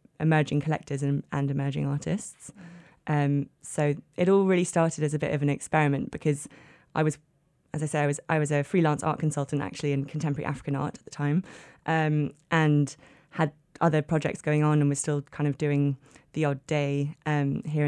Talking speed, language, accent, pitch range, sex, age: 190 wpm, English, British, 145-155 Hz, female, 20-39